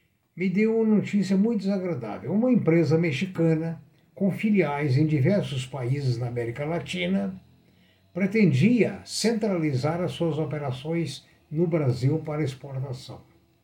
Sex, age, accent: male, 60-79, Brazilian